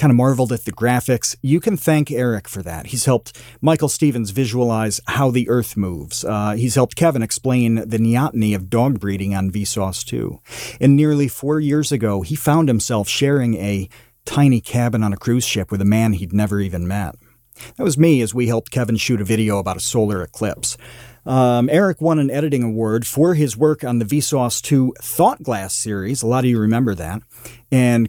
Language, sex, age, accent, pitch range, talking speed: English, male, 40-59, American, 110-135 Hz, 200 wpm